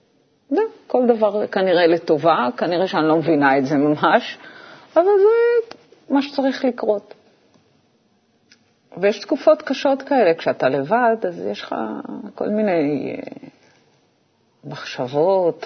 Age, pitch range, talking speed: 40-59, 165-260 Hz, 110 wpm